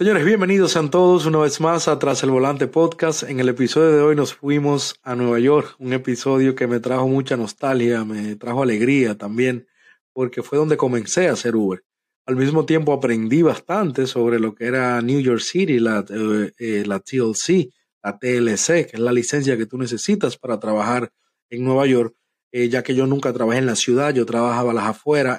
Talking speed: 195 wpm